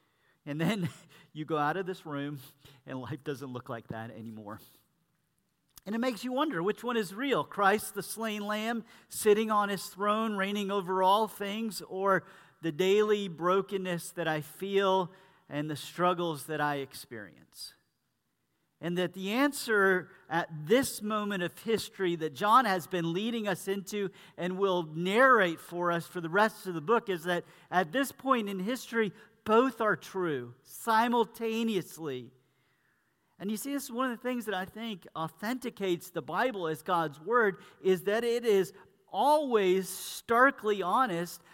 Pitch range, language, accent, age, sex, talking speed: 165-215 Hz, English, American, 50-69, male, 160 wpm